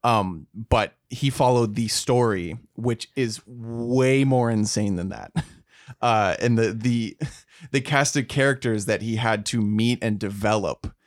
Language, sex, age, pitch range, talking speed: English, male, 20-39, 110-130 Hz, 150 wpm